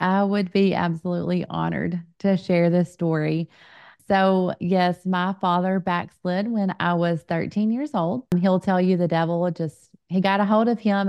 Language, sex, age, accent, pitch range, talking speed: English, female, 30-49, American, 160-185 Hz, 175 wpm